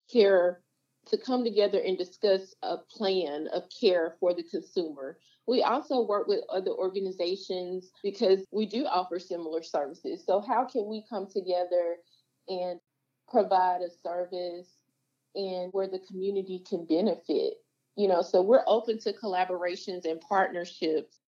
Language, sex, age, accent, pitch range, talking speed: English, female, 30-49, American, 180-210 Hz, 140 wpm